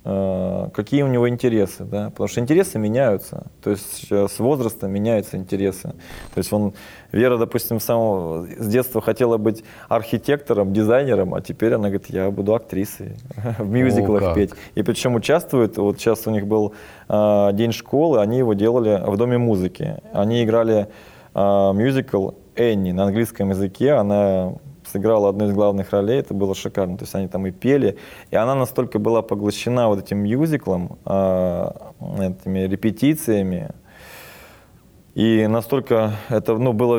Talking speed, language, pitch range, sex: 145 wpm, Russian, 95-115 Hz, male